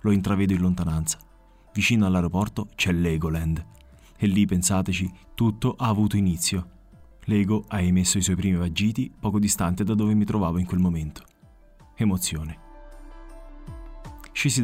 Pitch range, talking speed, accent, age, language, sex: 85-105 Hz, 135 wpm, native, 30-49, Italian, male